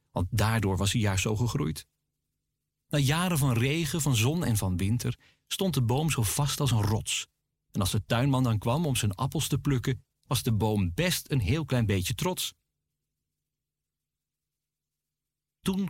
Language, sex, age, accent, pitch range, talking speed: Dutch, male, 40-59, Dutch, 100-135 Hz, 170 wpm